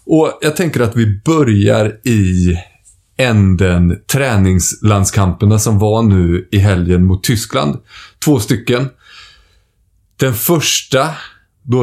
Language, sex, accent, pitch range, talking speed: Swedish, male, native, 95-120 Hz, 105 wpm